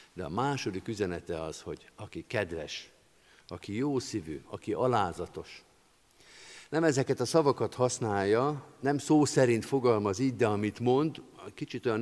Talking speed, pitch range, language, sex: 135 wpm, 100-130 Hz, Hungarian, male